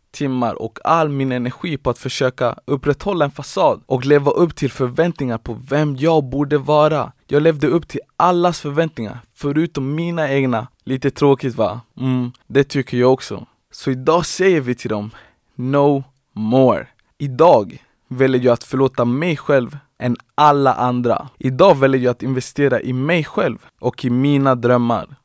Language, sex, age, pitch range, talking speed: Swedish, male, 20-39, 120-145 Hz, 160 wpm